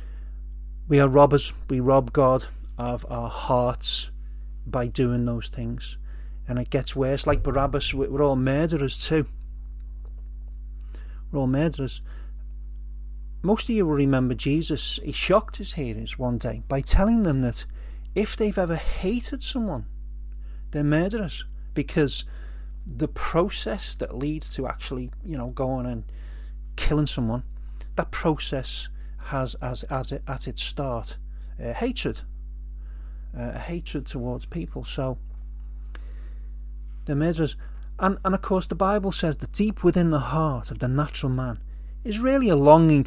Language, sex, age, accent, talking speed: English, male, 30-49, British, 140 wpm